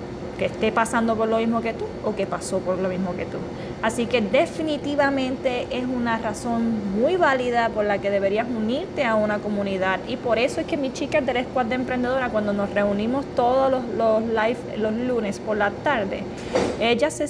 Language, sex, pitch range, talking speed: Spanish, female, 215-275 Hz, 200 wpm